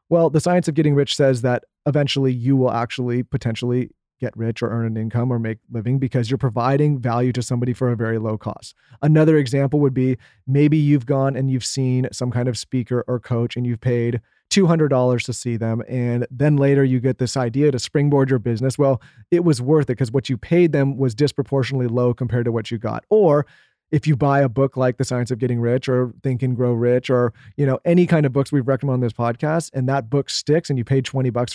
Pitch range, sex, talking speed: 120-145 Hz, male, 230 wpm